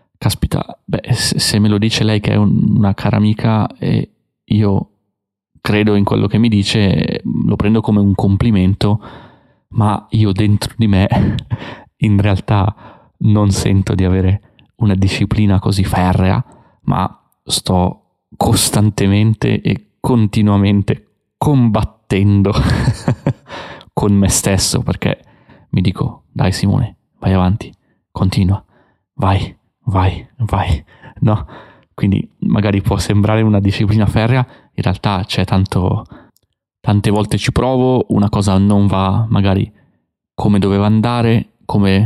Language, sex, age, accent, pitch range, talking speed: Italian, male, 30-49, native, 95-110 Hz, 120 wpm